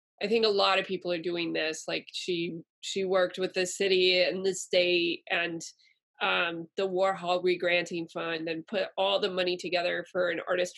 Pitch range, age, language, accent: 180-220 Hz, 20-39, English, American